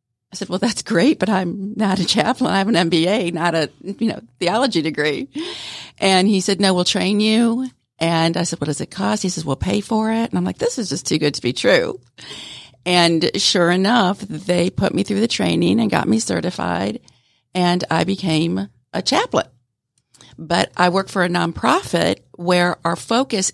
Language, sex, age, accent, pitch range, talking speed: English, female, 50-69, American, 160-195 Hz, 200 wpm